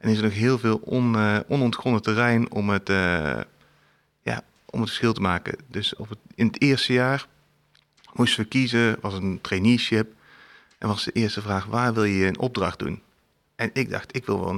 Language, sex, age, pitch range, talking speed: Dutch, male, 40-59, 100-125 Hz, 200 wpm